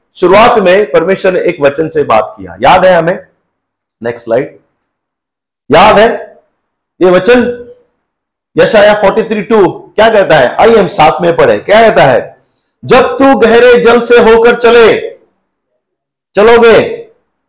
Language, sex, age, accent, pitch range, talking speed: Hindi, male, 50-69, native, 185-275 Hz, 135 wpm